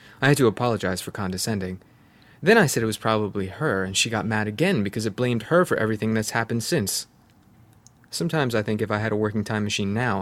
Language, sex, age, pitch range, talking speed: English, male, 20-39, 100-120 Hz, 225 wpm